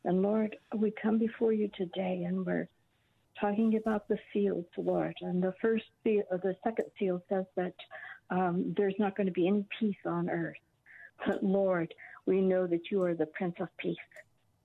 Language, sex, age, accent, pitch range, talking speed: English, female, 60-79, American, 175-205 Hz, 185 wpm